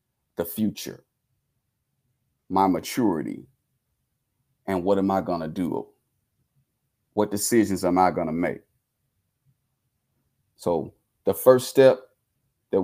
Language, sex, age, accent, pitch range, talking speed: English, male, 40-59, American, 105-130 Hz, 100 wpm